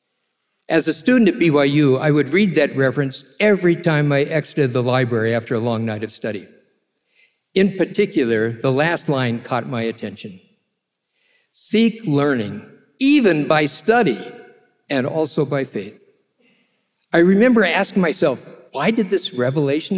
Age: 60-79